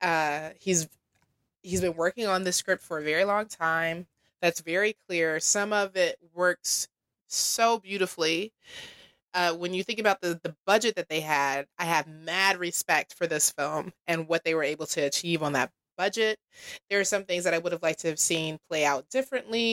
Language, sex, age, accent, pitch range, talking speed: English, female, 20-39, American, 165-210 Hz, 200 wpm